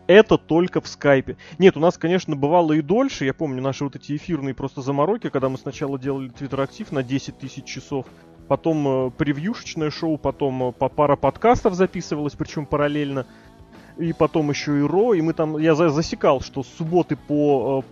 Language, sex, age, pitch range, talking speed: Russian, male, 20-39, 135-170 Hz, 180 wpm